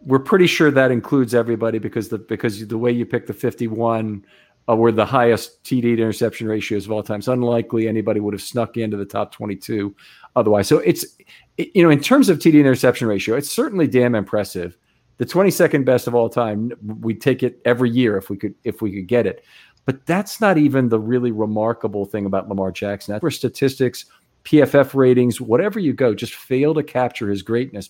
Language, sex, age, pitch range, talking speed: English, male, 50-69, 110-135 Hz, 205 wpm